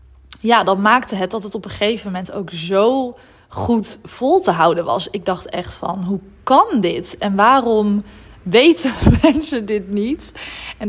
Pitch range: 180-215 Hz